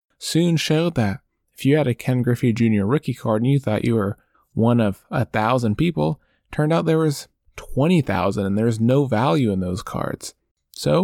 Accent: American